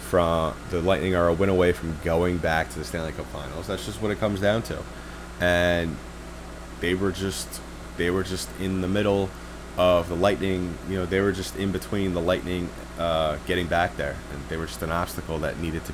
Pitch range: 80-95 Hz